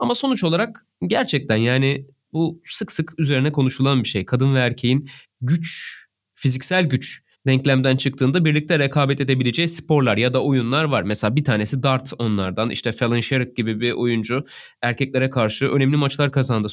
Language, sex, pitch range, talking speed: Turkish, male, 120-155 Hz, 160 wpm